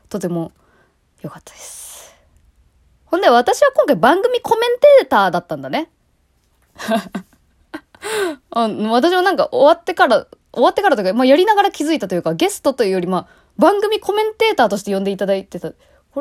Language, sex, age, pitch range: Japanese, female, 20-39, 175-275 Hz